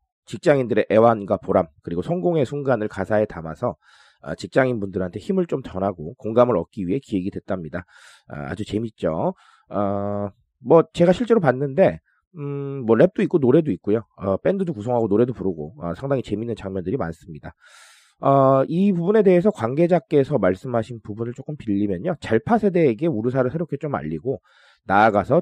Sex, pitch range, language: male, 100-155 Hz, Korean